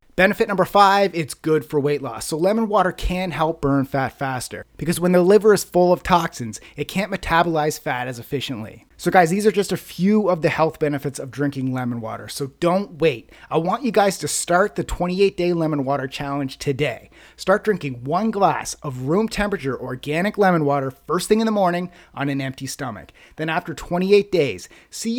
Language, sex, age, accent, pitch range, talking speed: English, male, 30-49, American, 140-185 Hz, 200 wpm